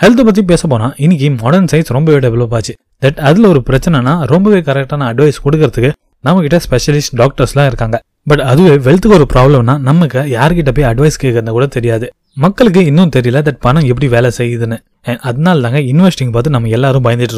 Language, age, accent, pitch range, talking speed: Tamil, 20-39, native, 120-150 Hz, 150 wpm